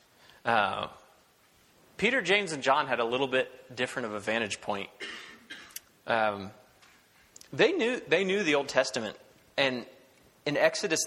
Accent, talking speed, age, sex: American, 135 wpm, 30-49, male